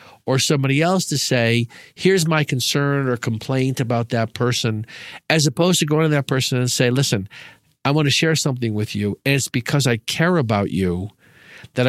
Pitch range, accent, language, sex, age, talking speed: 125-165 Hz, American, English, male, 50-69, 190 wpm